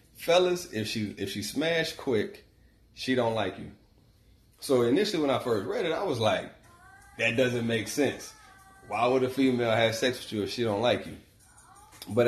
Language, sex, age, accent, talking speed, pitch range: English, male, 30-49, American, 190 wpm, 100-125 Hz